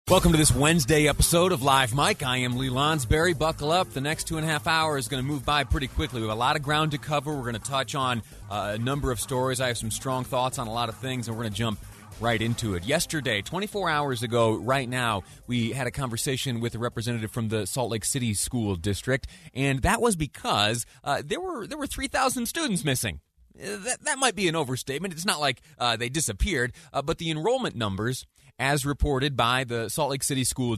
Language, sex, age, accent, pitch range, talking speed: English, male, 30-49, American, 115-150 Hz, 235 wpm